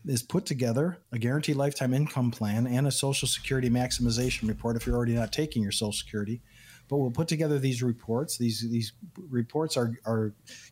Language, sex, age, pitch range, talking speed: English, male, 40-59, 120-150 Hz, 185 wpm